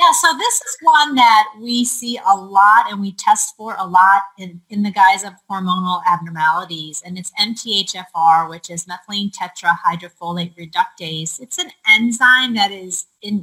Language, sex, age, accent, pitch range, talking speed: English, female, 30-49, American, 190-260 Hz, 160 wpm